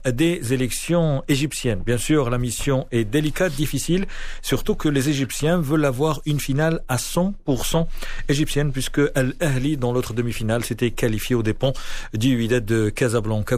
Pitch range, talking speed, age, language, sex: 115-145 Hz, 150 wpm, 40-59, Arabic, male